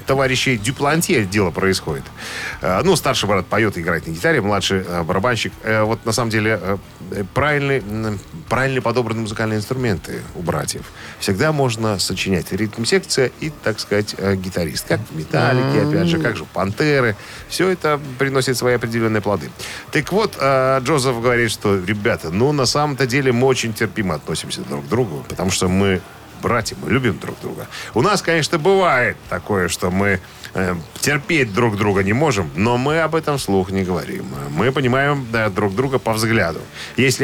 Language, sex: Russian, male